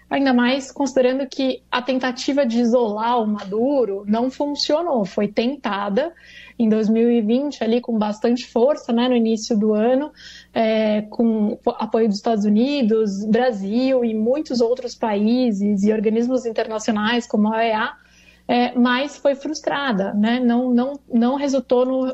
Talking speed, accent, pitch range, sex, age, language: 140 wpm, Brazilian, 220-265 Hz, female, 20-39, Portuguese